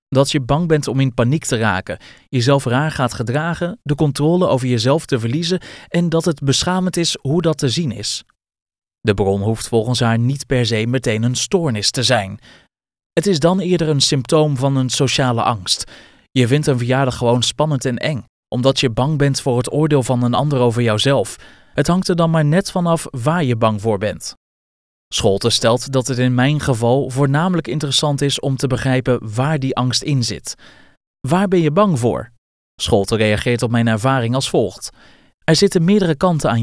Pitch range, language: 120-155 Hz, Dutch